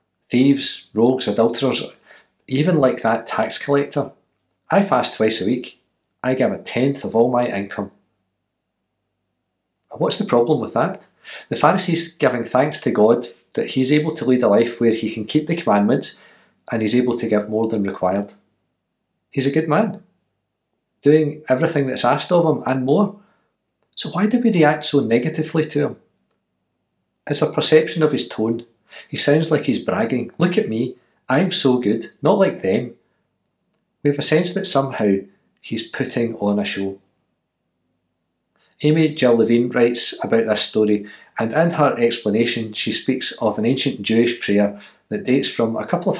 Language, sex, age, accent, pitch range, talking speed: English, male, 40-59, British, 105-145 Hz, 170 wpm